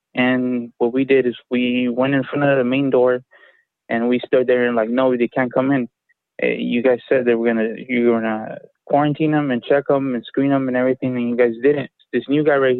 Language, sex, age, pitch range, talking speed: English, male, 20-39, 120-135 Hz, 225 wpm